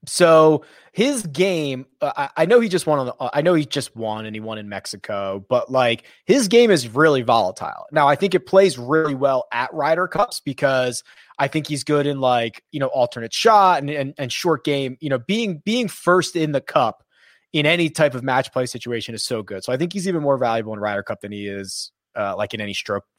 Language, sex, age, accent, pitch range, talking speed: English, male, 20-39, American, 130-175 Hz, 235 wpm